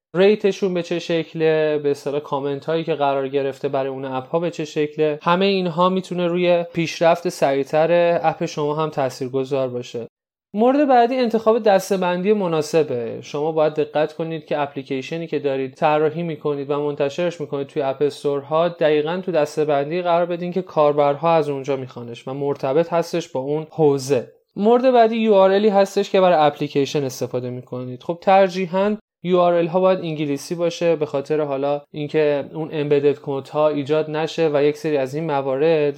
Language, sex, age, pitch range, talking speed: Persian, male, 20-39, 145-175 Hz, 165 wpm